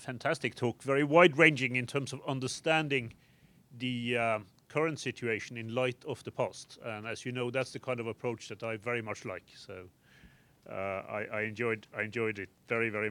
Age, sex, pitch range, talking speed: 30-49, male, 110-140 Hz, 190 wpm